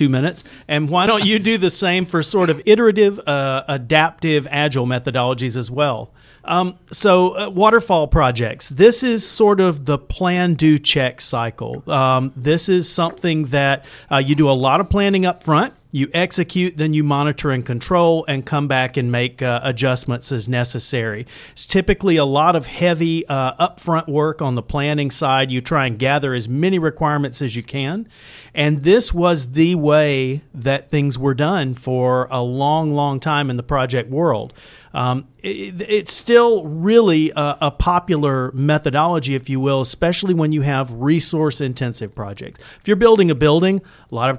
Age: 40-59